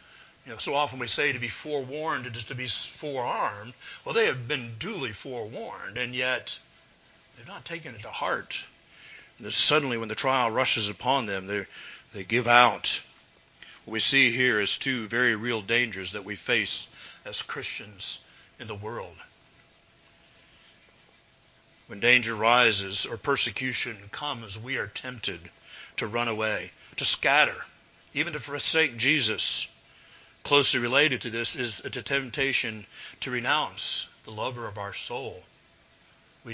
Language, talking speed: English, 145 wpm